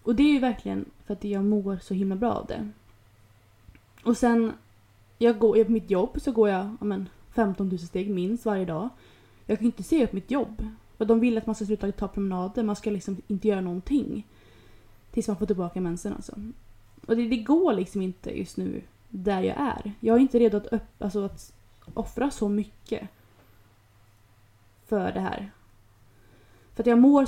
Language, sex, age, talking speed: Swedish, female, 20-39, 200 wpm